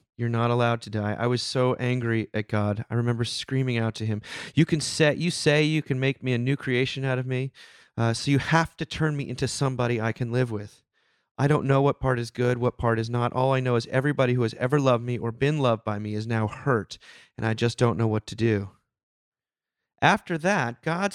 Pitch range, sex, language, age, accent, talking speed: 115-140 Hz, male, English, 30-49, American, 240 wpm